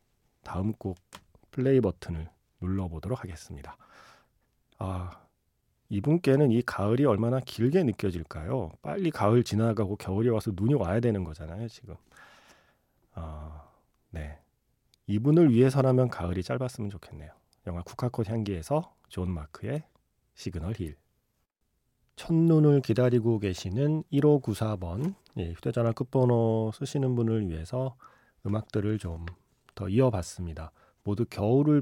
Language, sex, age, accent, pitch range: Korean, male, 40-59, native, 95-130 Hz